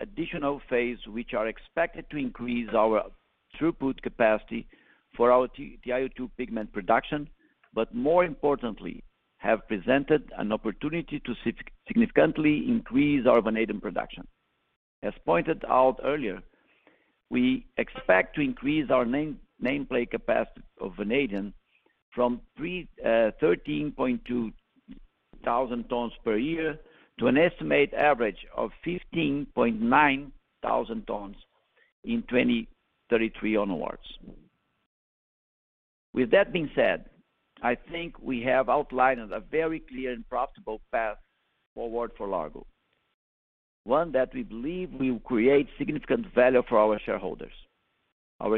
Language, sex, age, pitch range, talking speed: English, male, 50-69, 115-160 Hz, 110 wpm